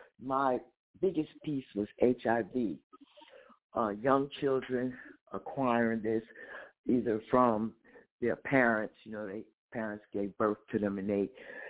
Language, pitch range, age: English, 115-160 Hz, 60-79